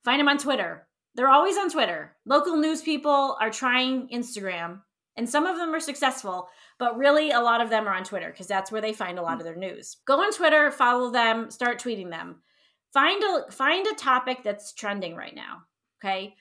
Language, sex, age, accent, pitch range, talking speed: English, female, 30-49, American, 205-270 Hz, 210 wpm